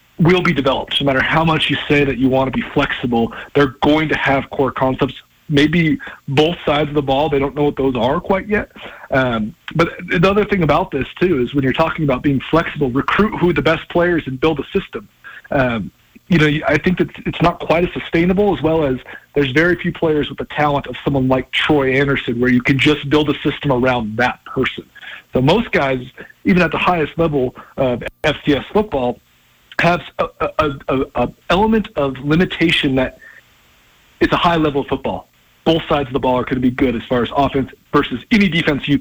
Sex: male